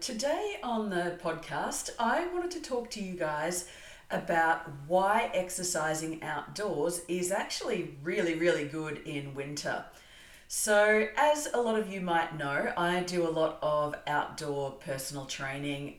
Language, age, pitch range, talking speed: English, 40-59, 145-190 Hz, 145 wpm